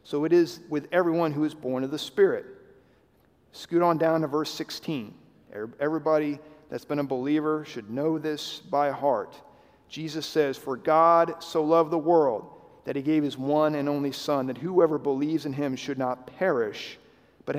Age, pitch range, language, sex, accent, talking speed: 40-59, 150-205 Hz, English, male, American, 175 wpm